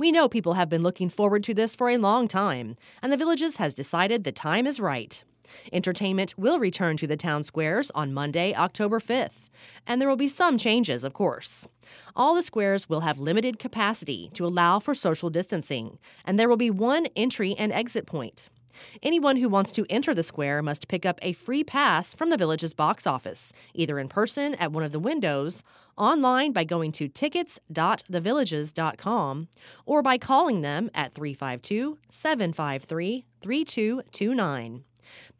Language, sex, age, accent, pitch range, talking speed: English, female, 30-49, American, 155-235 Hz, 170 wpm